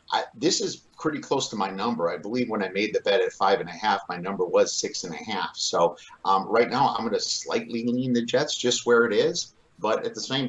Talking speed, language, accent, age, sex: 230 wpm, English, American, 50-69, male